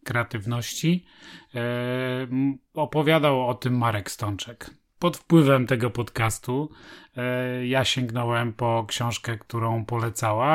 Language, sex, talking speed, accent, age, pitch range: Polish, male, 90 wpm, native, 30-49, 120-145 Hz